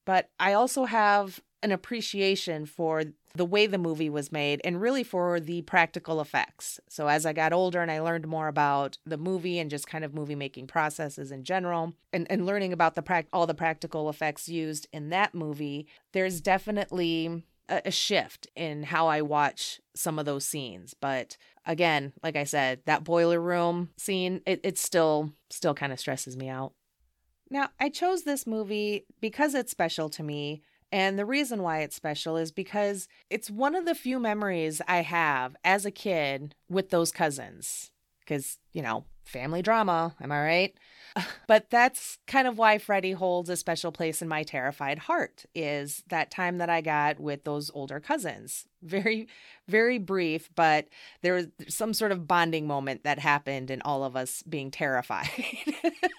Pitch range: 150-195 Hz